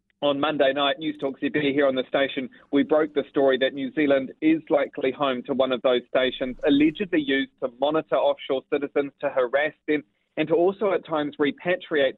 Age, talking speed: 30-49, 190 wpm